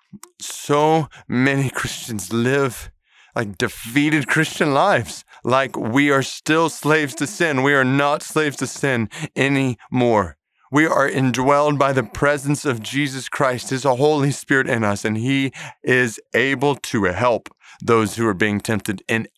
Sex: male